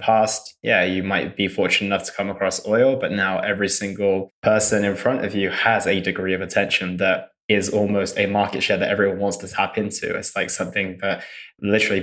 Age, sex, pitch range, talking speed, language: 20-39, male, 100-105 Hz, 210 wpm, English